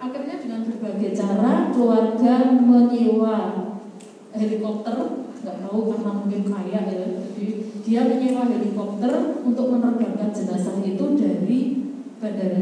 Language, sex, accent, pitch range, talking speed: Indonesian, female, native, 205-245 Hz, 100 wpm